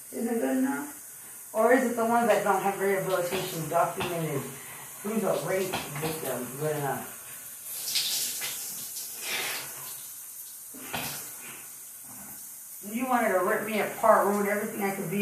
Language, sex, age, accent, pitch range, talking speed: English, female, 30-49, American, 175-220 Hz, 120 wpm